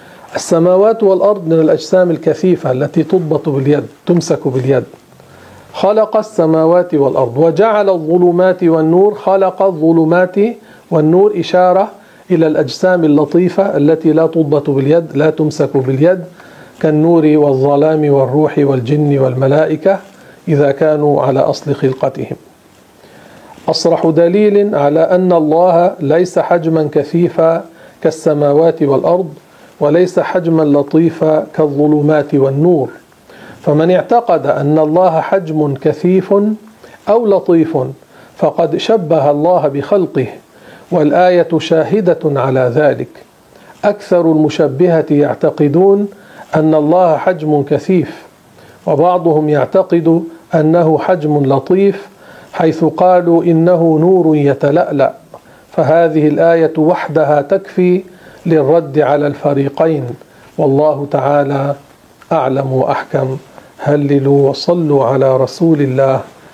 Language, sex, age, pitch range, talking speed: Arabic, male, 50-69, 145-180 Hz, 95 wpm